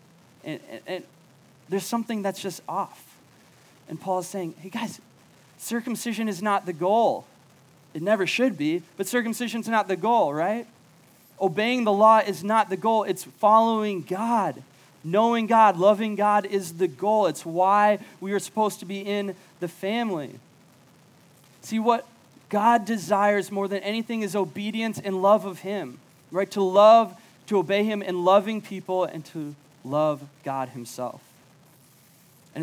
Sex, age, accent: male, 20-39, American